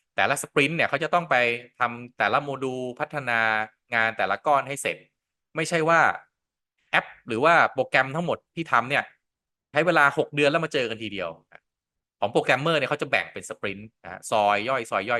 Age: 20-39